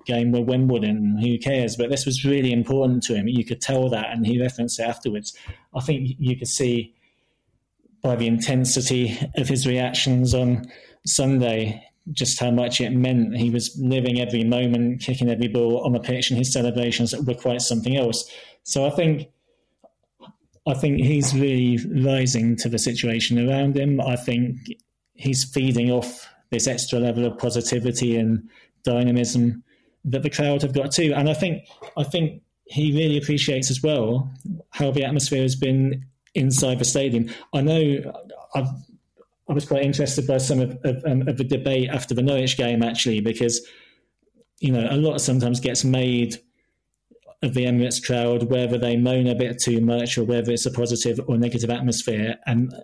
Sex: male